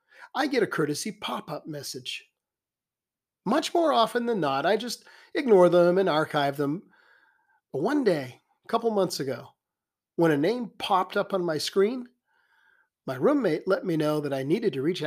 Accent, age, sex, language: American, 40-59, male, English